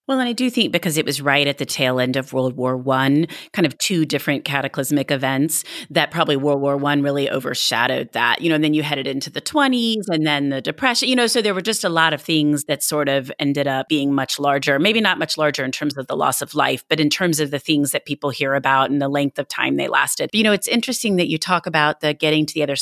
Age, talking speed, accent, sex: 30-49, 275 wpm, American, female